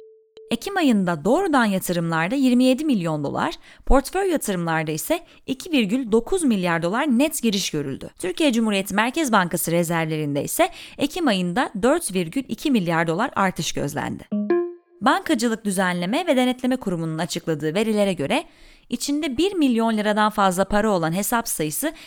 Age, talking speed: 30-49, 125 wpm